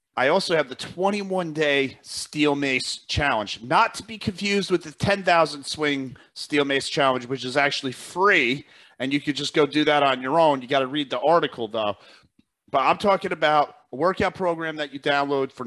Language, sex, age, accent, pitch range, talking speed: English, male, 40-59, American, 130-155 Hz, 195 wpm